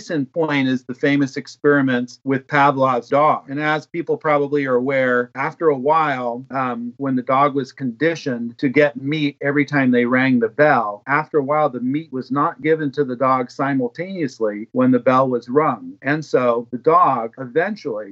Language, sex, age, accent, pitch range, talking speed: English, male, 50-69, American, 130-160 Hz, 180 wpm